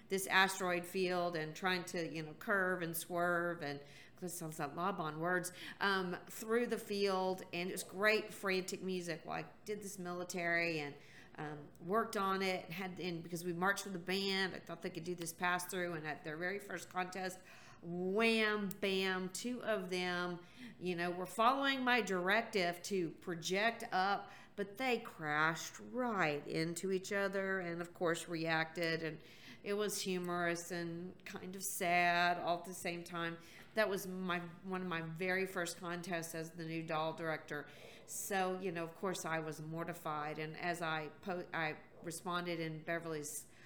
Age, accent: 40-59, American